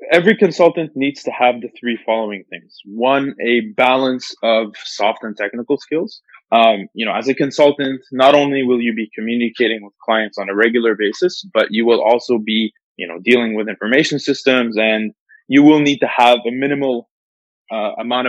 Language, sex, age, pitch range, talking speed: English, male, 20-39, 115-140 Hz, 185 wpm